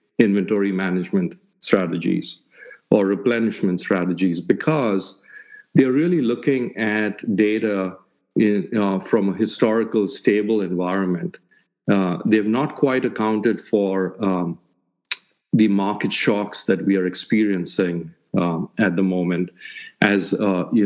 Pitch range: 95-110 Hz